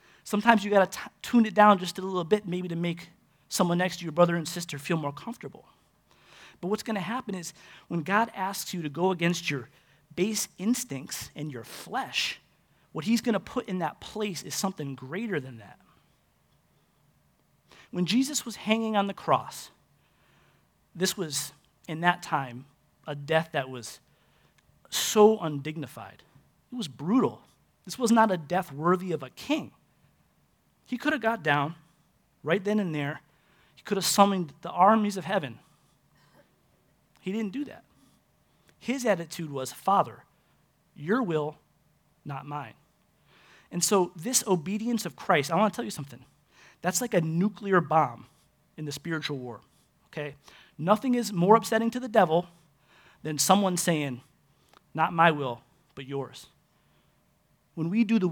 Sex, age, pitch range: male, 30-49, 150-205 Hz